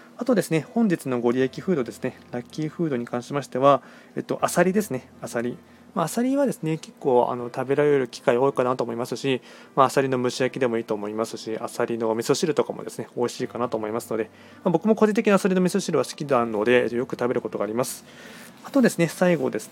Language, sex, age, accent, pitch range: Japanese, male, 20-39, native, 120-165 Hz